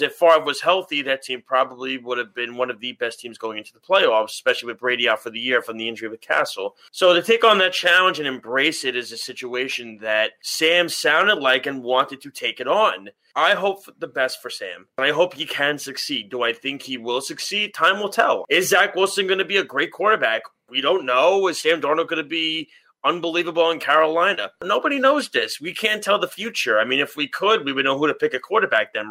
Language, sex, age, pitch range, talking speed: English, male, 30-49, 130-175 Hz, 240 wpm